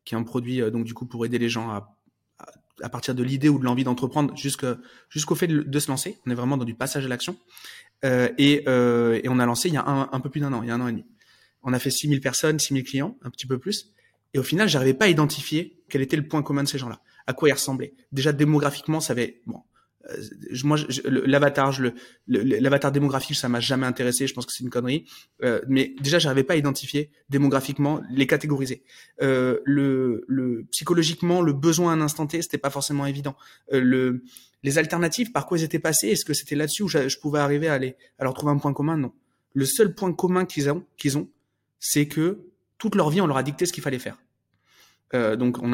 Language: French